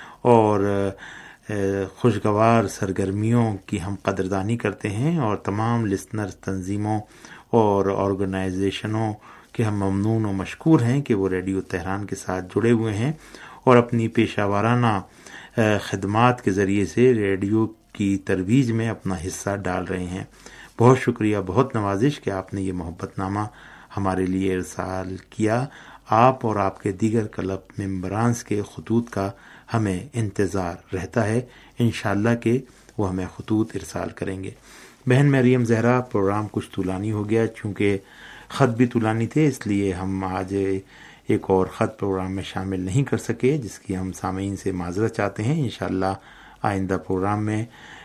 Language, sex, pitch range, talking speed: Urdu, male, 95-115 Hz, 150 wpm